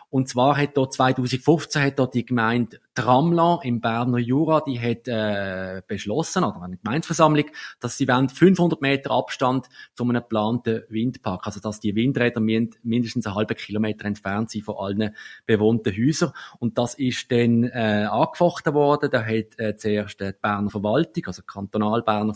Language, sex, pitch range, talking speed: German, male, 110-130 Hz, 160 wpm